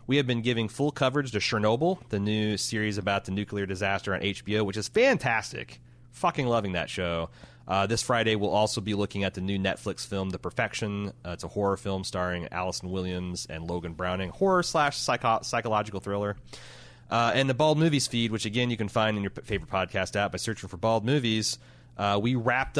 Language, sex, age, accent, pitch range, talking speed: English, male, 30-49, American, 95-115 Hz, 205 wpm